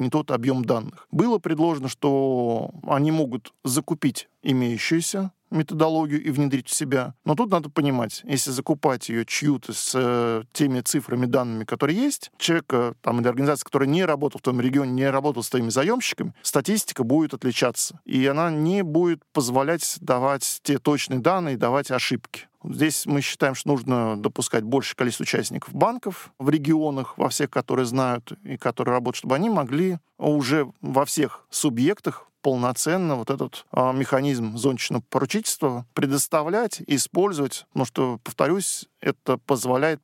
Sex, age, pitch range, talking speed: male, 40-59, 125-155 Hz, 150 wpm